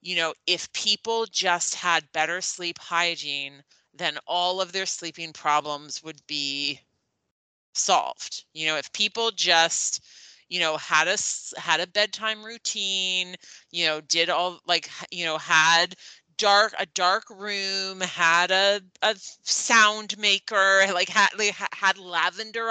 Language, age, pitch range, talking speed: English, 30-49, 165-210 Hz, 135 wpm